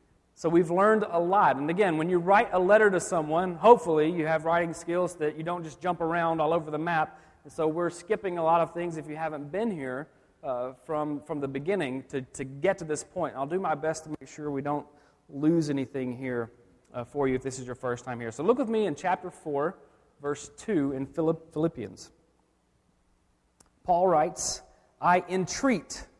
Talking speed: 210 wpm